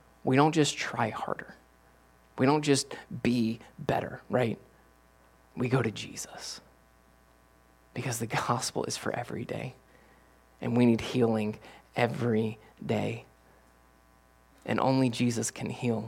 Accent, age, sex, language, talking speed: American, 20-39, male, English, 125 wpm